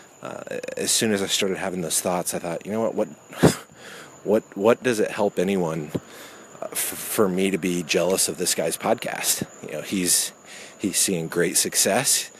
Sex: male